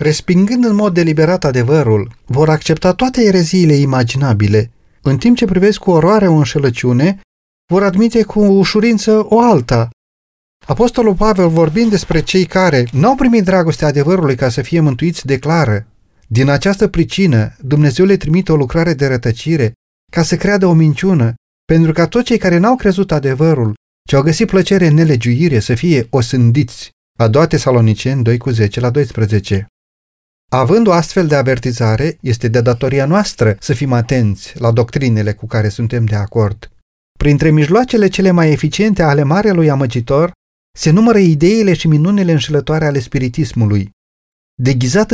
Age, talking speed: 40-59, 150 wpm